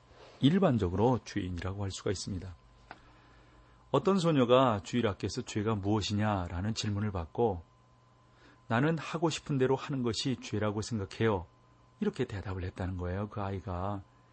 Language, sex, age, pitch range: Korean, male, 40-59, 100-130 Hz